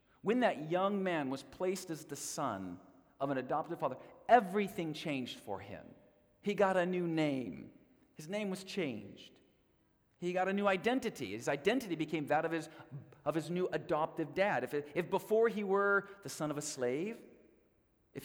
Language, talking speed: English, 175 wpm